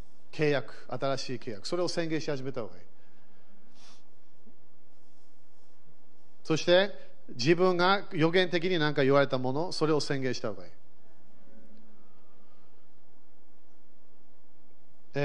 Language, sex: Japanese, male